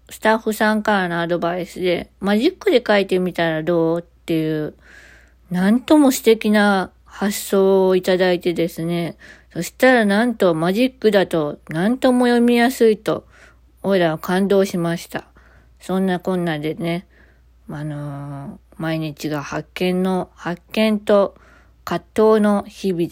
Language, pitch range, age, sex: Japanese, 170-220 Hz, 20-39, female